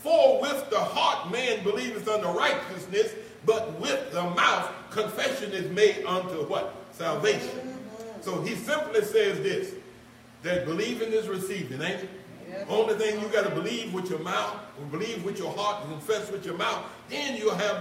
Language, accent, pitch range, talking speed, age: English, American, 185-255 Hz, 170 wpm, 60-79